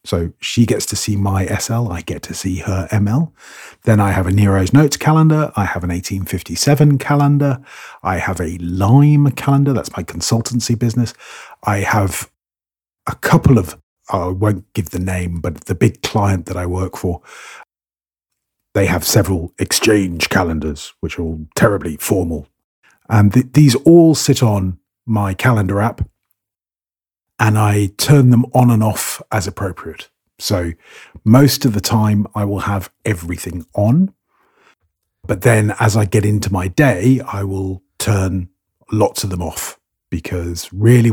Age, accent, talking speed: 40-59, British, 155 wpm